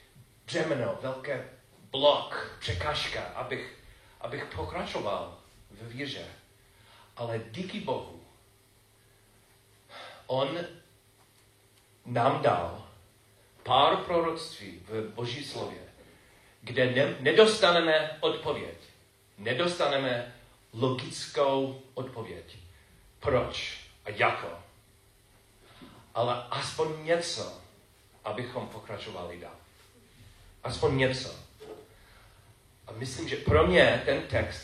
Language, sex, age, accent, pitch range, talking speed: Czech, male, 40-59, native, 100-135 Hz, 80 wpm